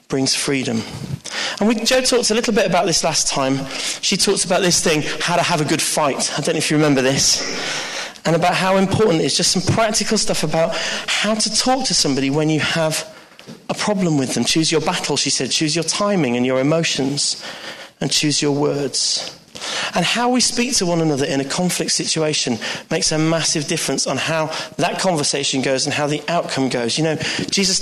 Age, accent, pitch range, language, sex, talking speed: 40-59, British, 145-185 Hz, English, male, 205 wpm